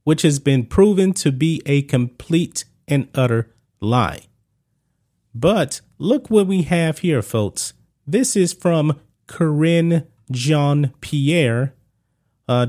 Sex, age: male, 30-49